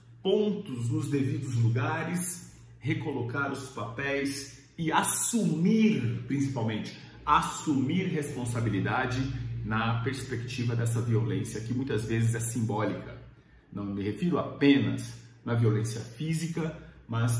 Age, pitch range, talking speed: 50-69, 115-140 Hz, 100 wpm